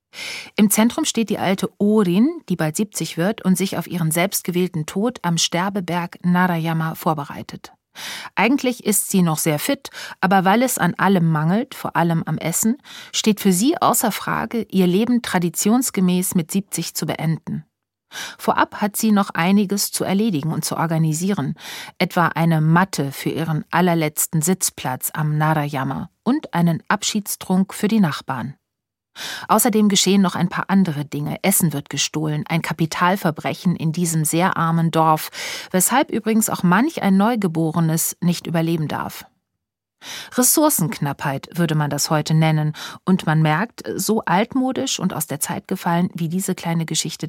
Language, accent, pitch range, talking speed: German, German, 165-210 Hz, 150 wpm